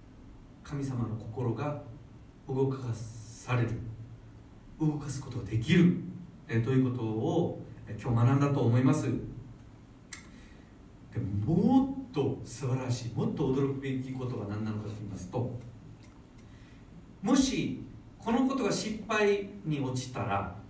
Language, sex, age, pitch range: Japanese, male, 40-59, 115-165 Hz